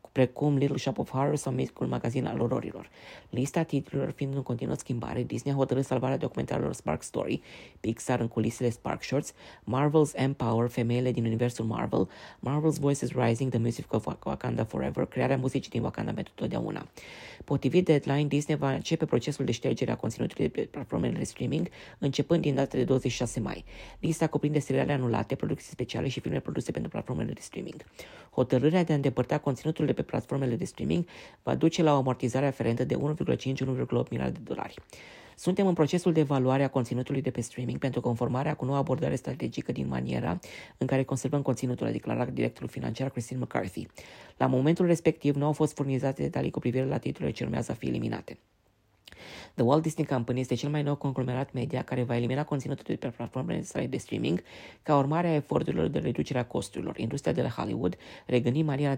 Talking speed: 180 wpm